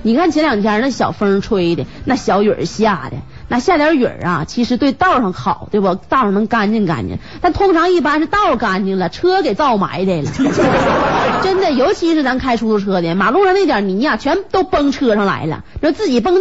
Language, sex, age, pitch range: Chinese, female, 30-49, 195-310 Hz